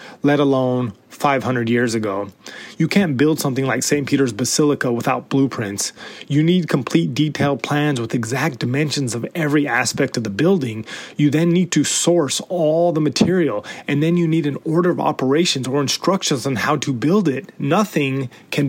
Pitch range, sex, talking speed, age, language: 130-160 Hz, male, 175 wpm, 30-49, English